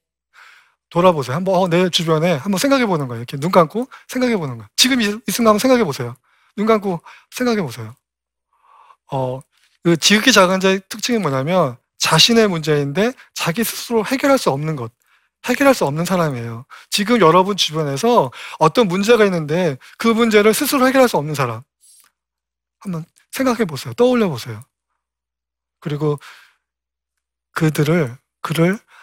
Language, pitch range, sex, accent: Korean, 135-200 Hz, male, native